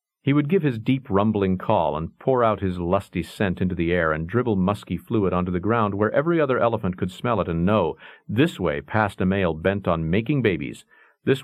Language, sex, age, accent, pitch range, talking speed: English, male, 50-69, American, 90-130 Hz, 220 wpm